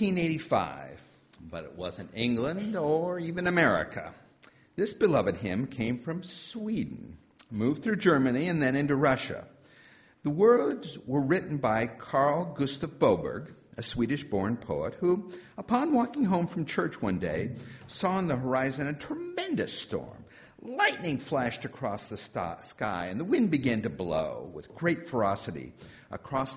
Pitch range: 115-175 Hz